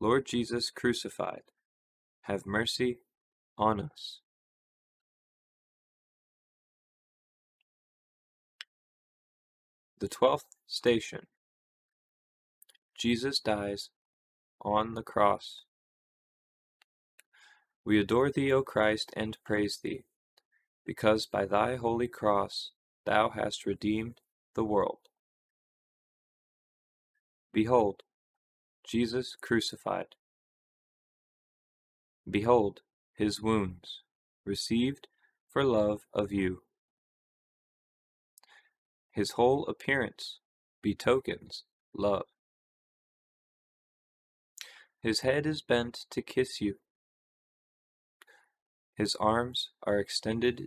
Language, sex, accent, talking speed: English, male, American, 70 wpm